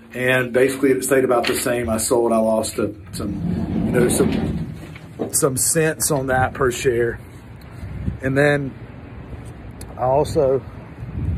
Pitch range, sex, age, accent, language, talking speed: 115-130 Hz, male, 40-59, American, English, 130 wpm